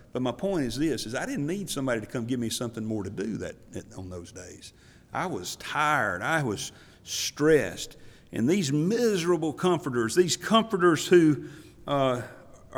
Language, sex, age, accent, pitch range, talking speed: English, male, 50-69, American, 115-165 Hz, 165 wpm